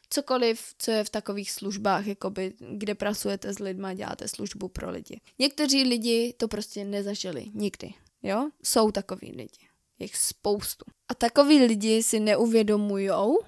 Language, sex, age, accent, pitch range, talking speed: Czech, female, 20-39, native, 205-235 Hz, 145 wpm